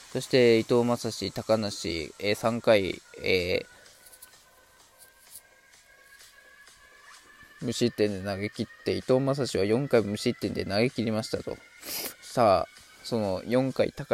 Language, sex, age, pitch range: Japanese, male, 20-39, 105-135 Hz